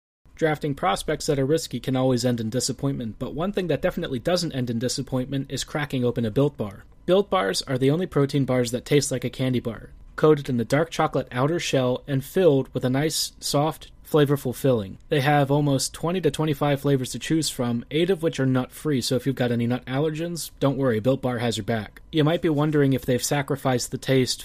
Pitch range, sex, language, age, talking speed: 125-155 Hz, male, English, 30-49, 225 wpm